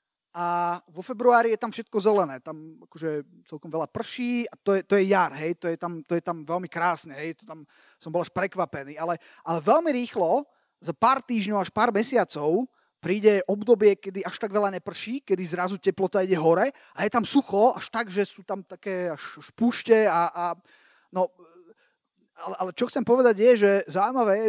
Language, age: Slovak, 30-49